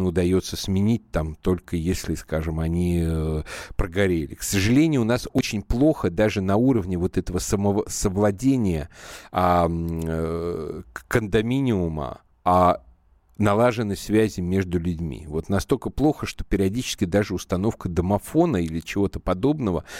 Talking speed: 115 wpm